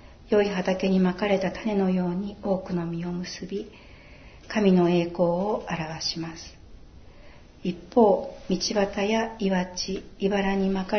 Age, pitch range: 60-79, 170-200 Hz